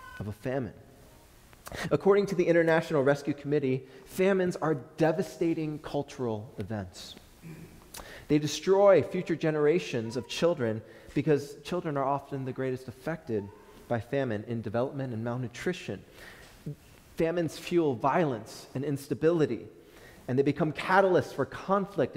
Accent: American